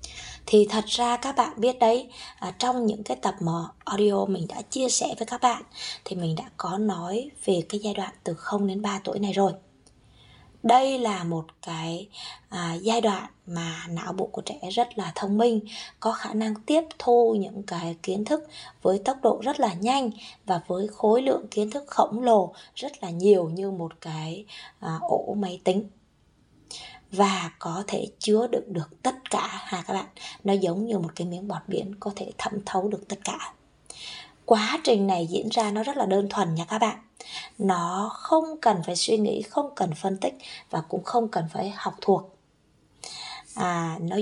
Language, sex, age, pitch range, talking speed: Vietnamese, female, 20-39, 185-240 Hz, 190 wpm